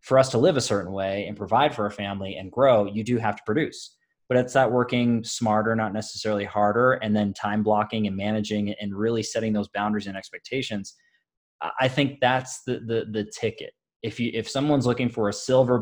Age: 20-39